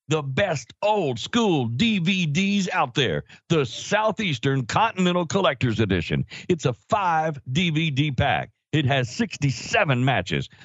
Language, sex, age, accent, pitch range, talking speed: English, male, 60-79, American, 115-150 Hz, 120 wpm